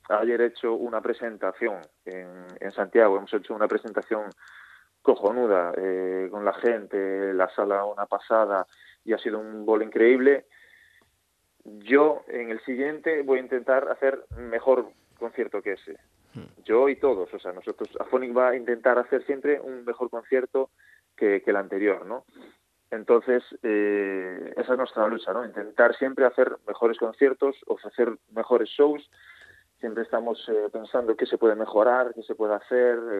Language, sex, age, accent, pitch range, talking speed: Spanish, male, 20-39, Spanish, 105-130 Hz, 155 wpm